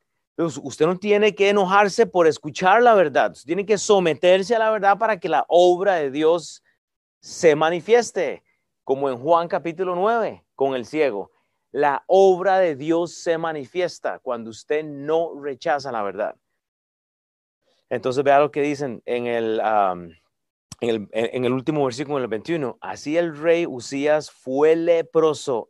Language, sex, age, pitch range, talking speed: Spanish, male, 40-59, 140-185 Hz, 160 wpm